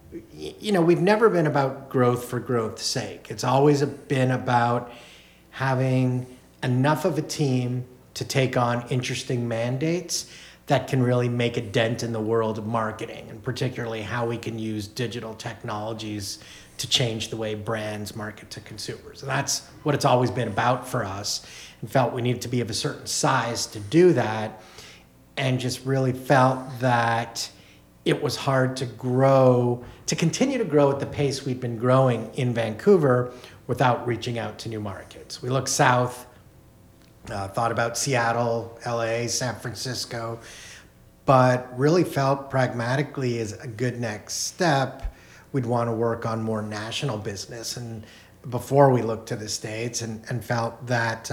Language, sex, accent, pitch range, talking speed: English, male, American, 110-130 Hz, 160 wpm